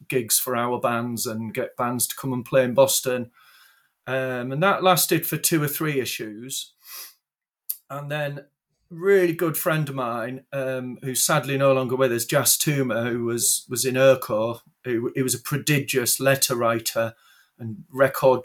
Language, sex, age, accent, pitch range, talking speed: English, male, 40-59, British, 125-150 Hz, 170 wpm